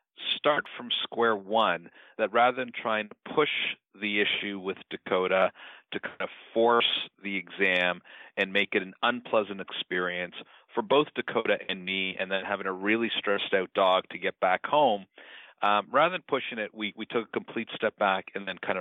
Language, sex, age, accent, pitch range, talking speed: English, male, 40-59, American, 95-105 Hz, 185 wpm